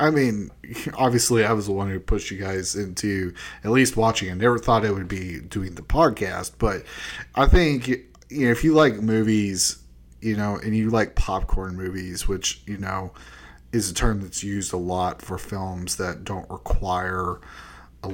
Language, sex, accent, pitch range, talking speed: English, male, American, 95-115 Hz, 180 wpm